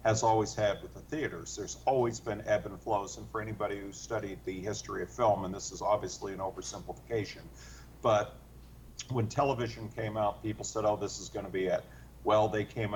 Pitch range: 105-115 Hz